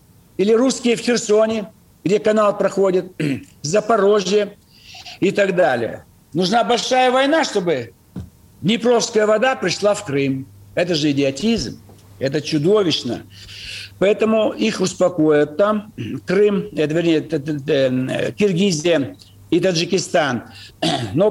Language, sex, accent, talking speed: Russian, male, native, 95 wpm